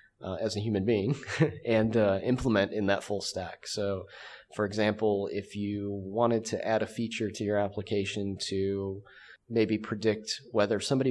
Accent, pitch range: American, 100-115 Hz